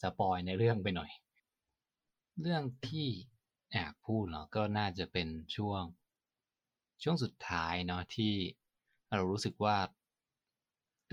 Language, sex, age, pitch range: Thai, male, 20-39, 90-115 Hz